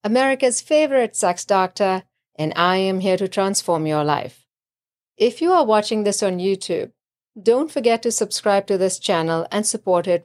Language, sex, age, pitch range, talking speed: English, female, 50-69, 175-235 Hz, 170 wpm